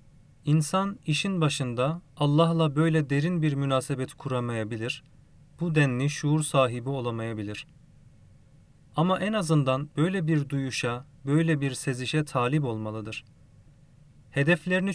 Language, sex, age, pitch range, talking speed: Turkish, male, 40-59, 130-155 Hz, 105 wpm